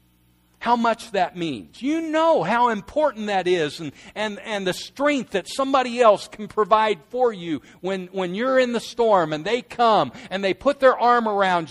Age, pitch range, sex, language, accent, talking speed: 50-69, 195-270 Hz, male, English, American, 190 wpm